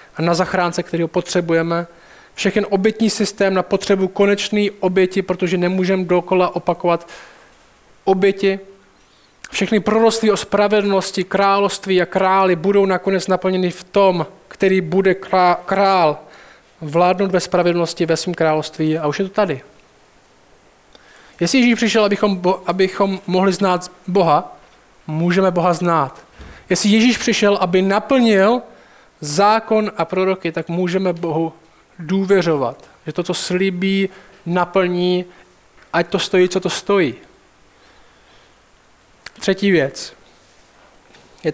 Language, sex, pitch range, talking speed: Czech, male, 175-200 Hz, 120 wpm